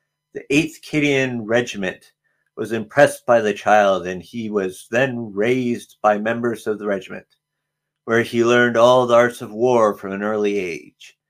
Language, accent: English, American